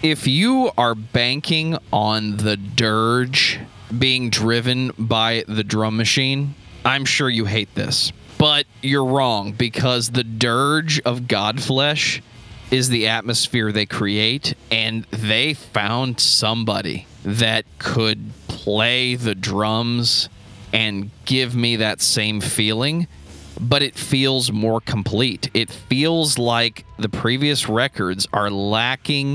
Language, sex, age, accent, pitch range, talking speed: English, male, 20-39, American, 105-130 Hz, 120 wpm